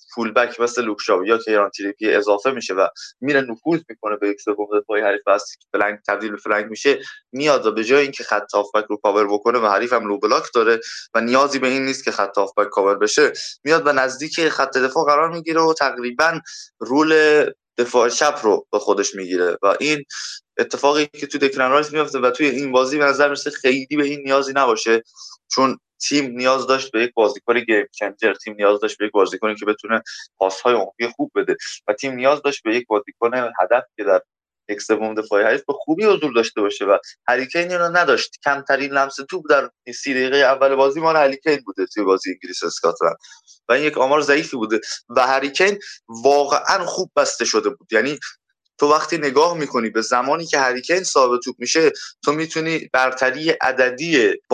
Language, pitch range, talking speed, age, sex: Persian, 115-150 Hz, 185 wpm, 20-39, male